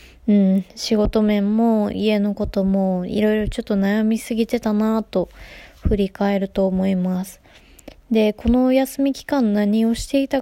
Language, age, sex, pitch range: Japanese, 20-39, female, 195-230 Hz